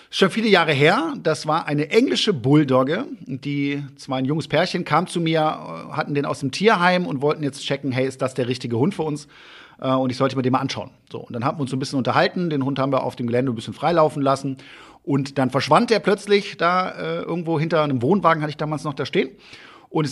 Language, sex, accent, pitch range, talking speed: German, male, German, 135-180 Hz, 235 wpm